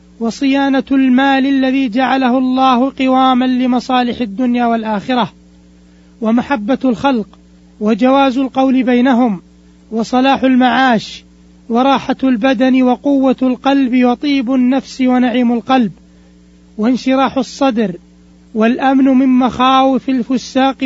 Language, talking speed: Arabic, 85 wpm